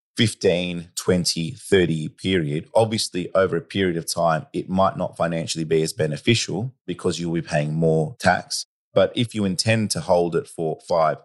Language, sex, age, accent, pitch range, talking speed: English, male, 30-49, Australian, 85-115 Hz, 175 wpm